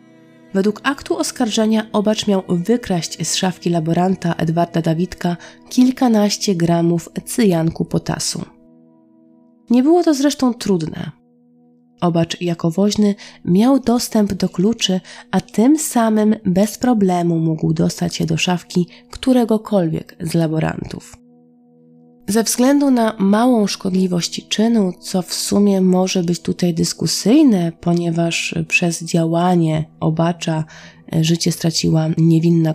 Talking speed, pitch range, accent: 110 wpm, 165-210 Hz, native